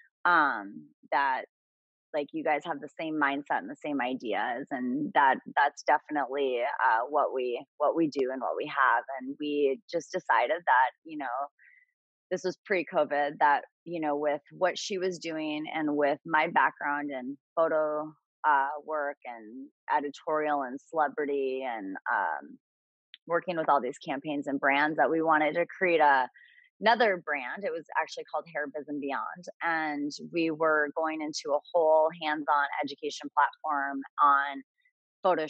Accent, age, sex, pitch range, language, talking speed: American, 20-39, female, 145-170 Hz, English, 160 wpm